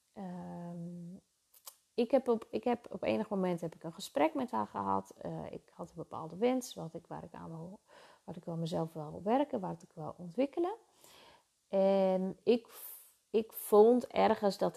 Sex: female